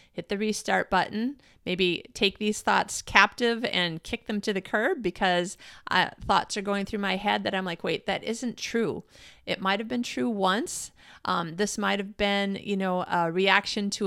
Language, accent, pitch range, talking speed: English, American, 180-210 Hz, 190 wpm